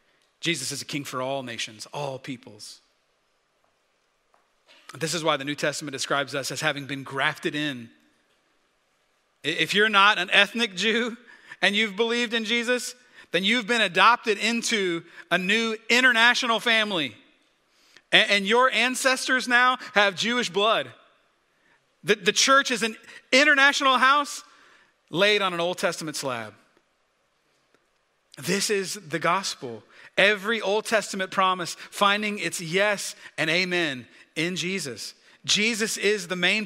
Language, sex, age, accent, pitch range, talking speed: English, male, 40-59, American, 150-215 Hz, 130 wpm